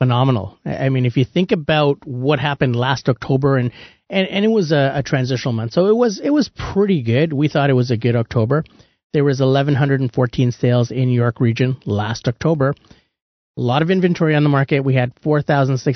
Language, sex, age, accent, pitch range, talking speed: English, male, 30-49, American, 125-155 Hz, 220 wpm